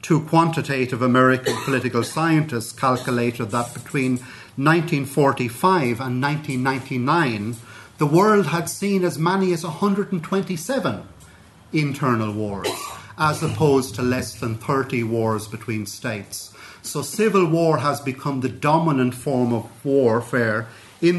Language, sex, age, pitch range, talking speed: English, male, 40-59, 115-150 Hz, 115 wpm